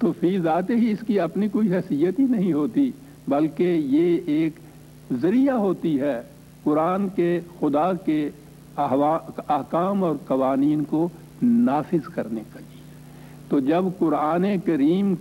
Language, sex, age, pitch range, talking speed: English, male, 70-89, 150-200 Hz, 125 wpm